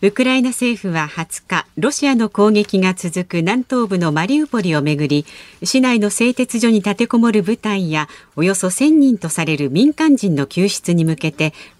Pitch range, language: 155-235 Hz, Japanese